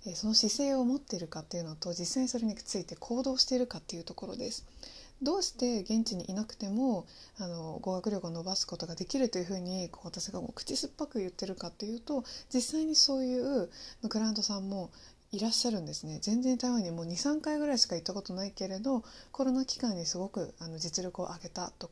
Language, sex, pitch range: Japanese, female, 175-245 Hz